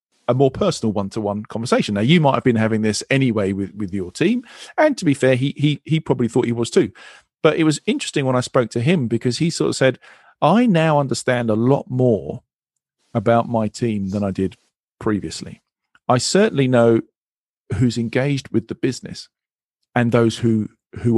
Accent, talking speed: British, 195 wpm